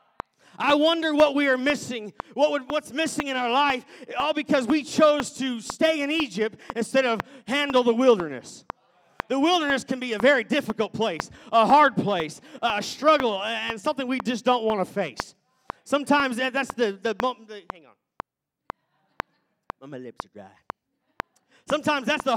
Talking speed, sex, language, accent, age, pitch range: 160 wpm, male, English, American, 40-59, 230-295 Hz